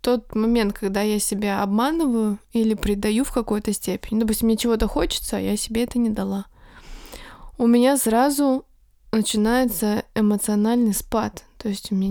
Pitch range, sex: 215-245 Hz, female